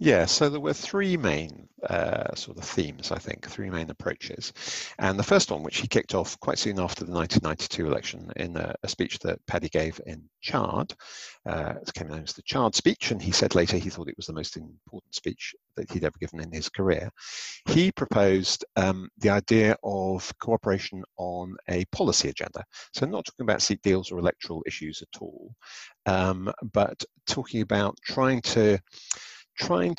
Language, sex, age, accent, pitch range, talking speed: English, male, 50-69, British, 85-110 Hz, 190 wpm